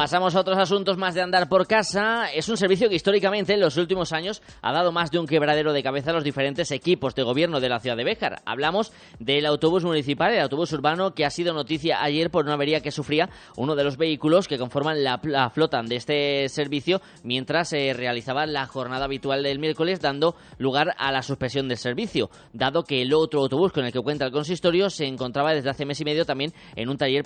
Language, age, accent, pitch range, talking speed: Spanish, 20-39, Spanish, 130-160 Hz, 225 wpm